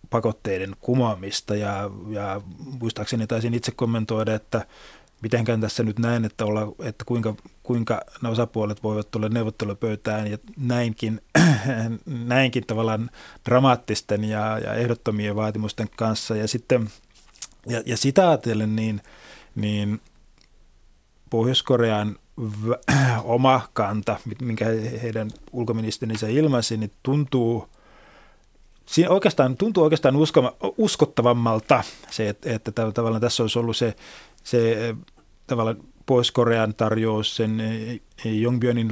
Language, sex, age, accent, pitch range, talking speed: Finnish, male, 30-49, native, 110-120 Hz, 100 wpm